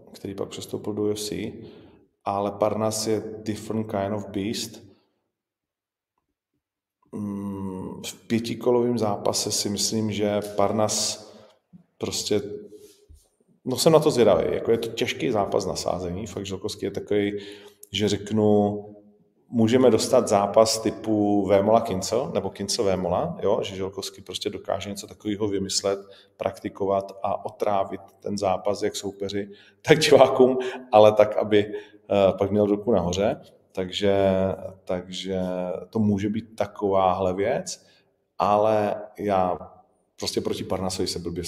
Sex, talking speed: male, 120 wpm